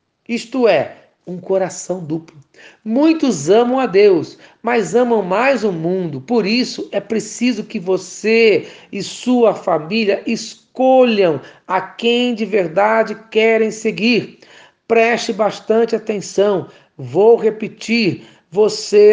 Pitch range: 190-230 Hz